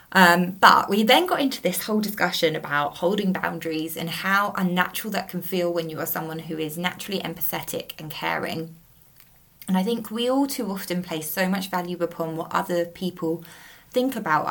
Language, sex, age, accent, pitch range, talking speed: English, female, 20-39, British, 165-190 Hz, 185 wpm